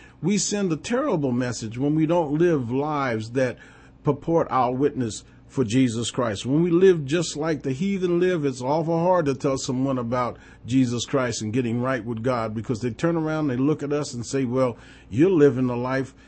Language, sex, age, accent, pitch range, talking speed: English, male, 40-59, American, 130-175 Hz, 205 wpm